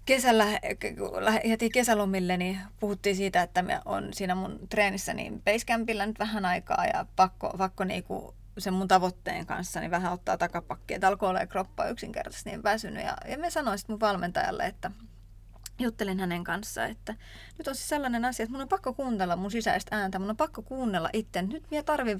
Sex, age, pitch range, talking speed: female, 30-49, 185-245 Hz, 185 wpm